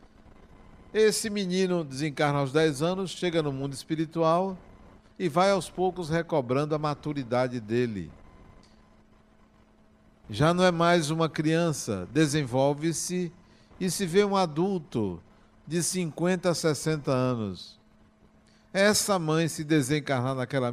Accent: Brazilian